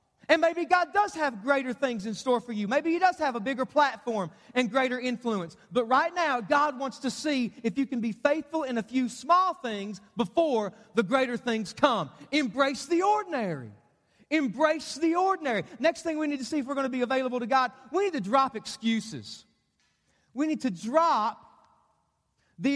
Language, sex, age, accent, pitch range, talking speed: English, male, 40-59, American, 225-285 Hz, 195 wpm